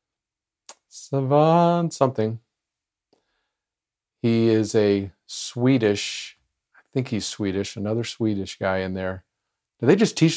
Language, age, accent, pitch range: English, 40-59, American, 100-125 Hz